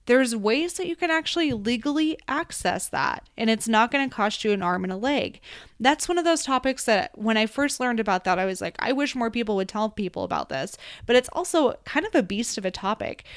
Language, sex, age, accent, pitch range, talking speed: English, female, 20-39, American, 200-250 Hz, 240 wpm